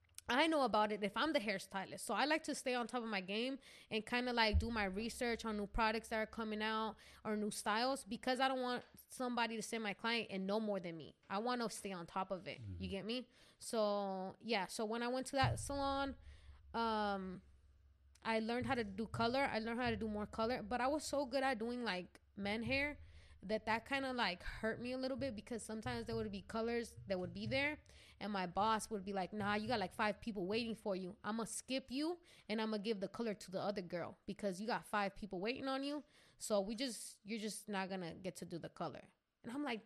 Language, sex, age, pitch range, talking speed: English, female, 20-39, 200-245 Hz, 255 wpm